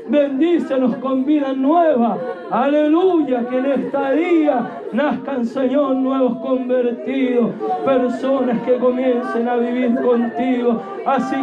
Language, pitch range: Spanish, 240-275 Hz